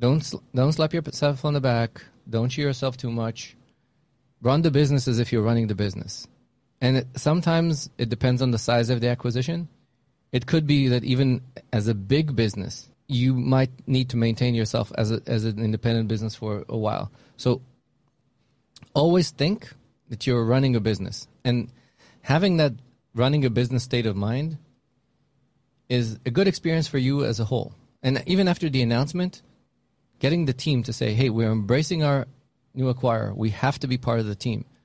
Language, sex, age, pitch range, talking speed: English, male, 20-39, 115-140 Hz, 185 wpm